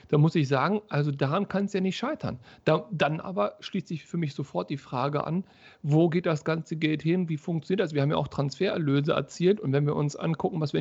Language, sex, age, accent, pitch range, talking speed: German, male, 40-59, German, 150-190 Hz, 245 wpm